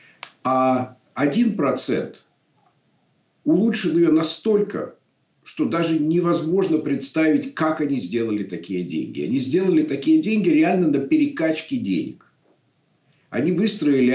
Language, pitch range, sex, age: Russian, 140-205 Hz, male, 50-69